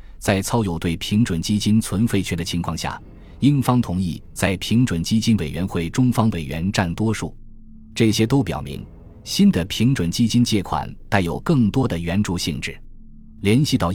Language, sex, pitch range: Chinese, male, 85-115 Hz